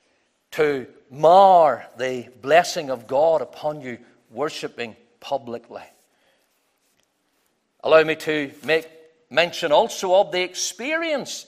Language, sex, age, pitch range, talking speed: English, male, 50-69, 155-225 Hz, 100 wpm